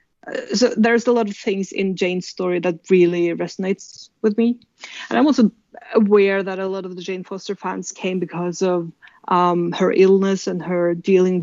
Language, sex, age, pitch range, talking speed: English, female, 20-39, 180-200 Hz, 185 wpm